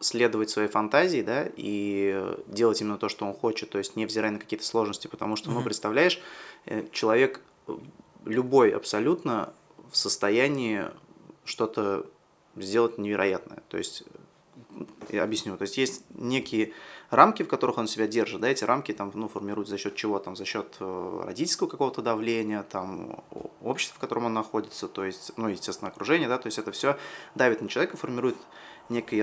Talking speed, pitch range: 165 wpm, 105-115 Hz